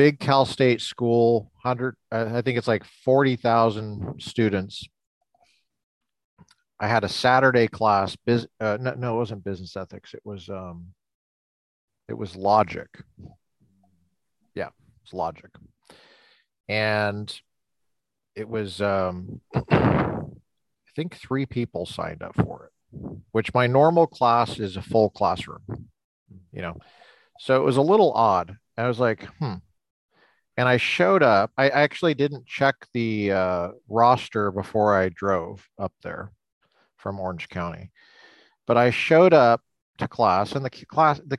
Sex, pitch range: male, 95-125 Hz